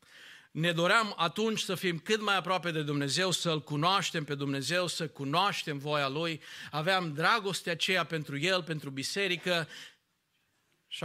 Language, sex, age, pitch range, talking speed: Romanian, male, 50-69, 150-200 Hz, 140 wpm